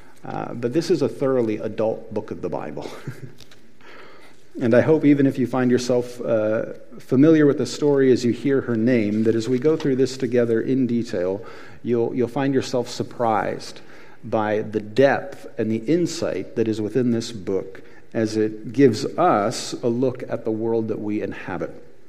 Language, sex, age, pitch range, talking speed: English, male, 40-59, 115-140 Hz, 180 wpm